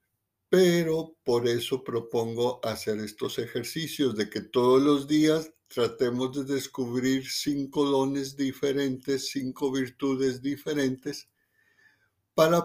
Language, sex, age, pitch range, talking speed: Spanish, male, 60-79, 120-140 Hz, 105 wpm